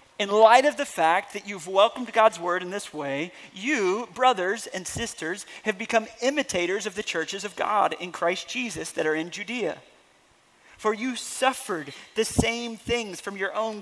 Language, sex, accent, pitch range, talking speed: English, male, American, 160-215 Hz, 180 wpm